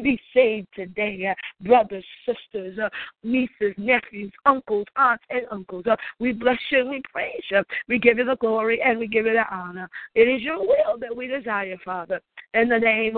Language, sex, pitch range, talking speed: English, female, 215-270 Hz, 195 wpm